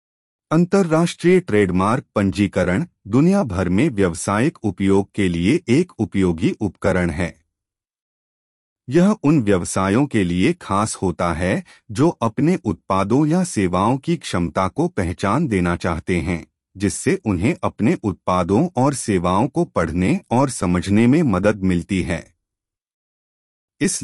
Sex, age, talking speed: male, 30-49, 120 wpm